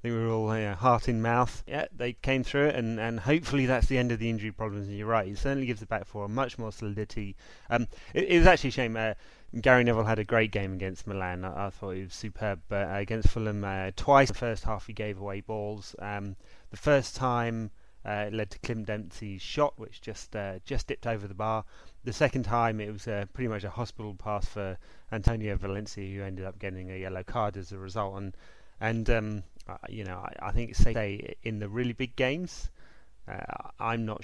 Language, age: English, 30-49